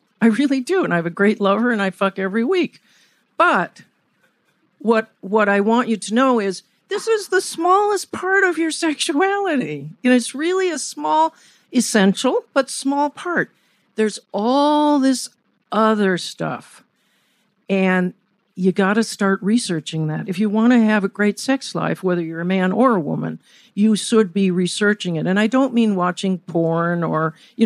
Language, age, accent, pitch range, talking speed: German, 50-69, American, 190-245 Hz, 180 wpm